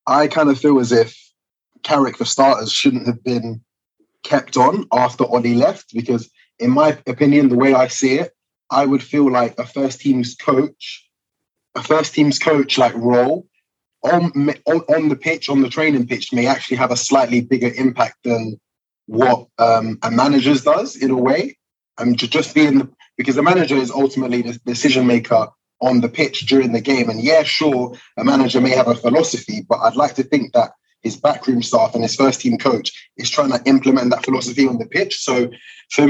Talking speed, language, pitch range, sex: 195 wpm, English, 120-145 Hz, male